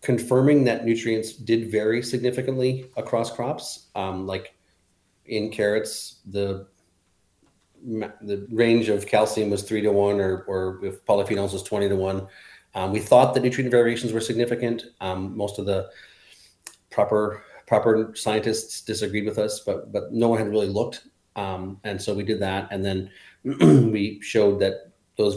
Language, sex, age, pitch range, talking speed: English, male, 30-49, 95-115 Hz, 155 wpm